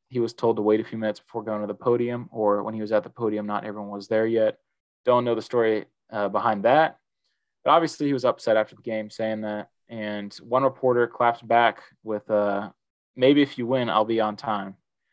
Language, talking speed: English, 225 wpm